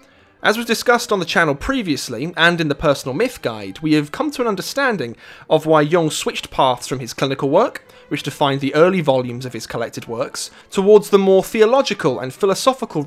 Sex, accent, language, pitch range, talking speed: male, British, English, 135-195 Hz, 200 wpm